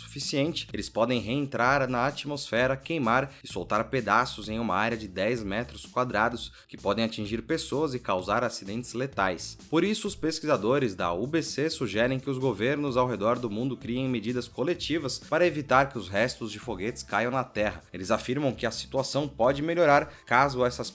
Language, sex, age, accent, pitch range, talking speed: Portuguese, male, 20-39, Brazilian, 115-145 Hz, 175 wpm